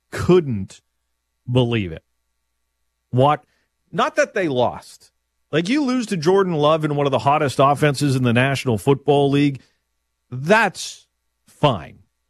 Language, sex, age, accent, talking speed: English, male, 40-59, American, 130 wpm